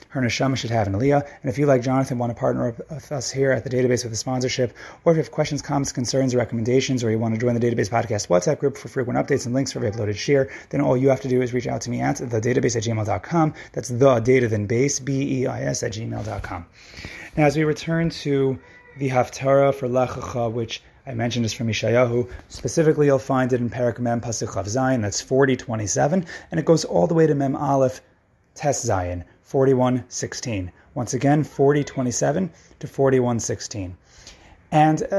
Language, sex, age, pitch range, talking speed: English, male, 30-49, 120-145 Hz, 200 wpm